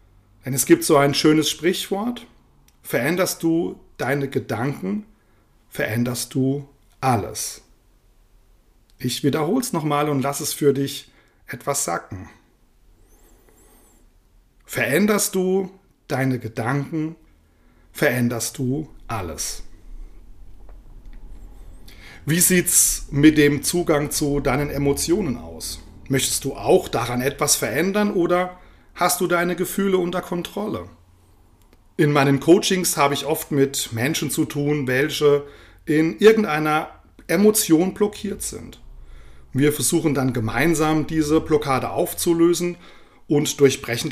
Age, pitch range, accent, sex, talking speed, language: 40-59, 120-170 Hz, German, male, 110 wpm, German